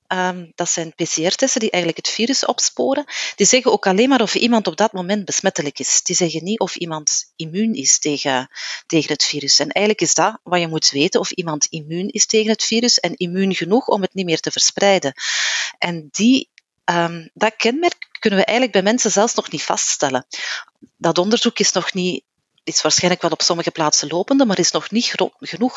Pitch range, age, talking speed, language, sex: 160-220 Hz, 40-59, 205 wpm, Dutch, female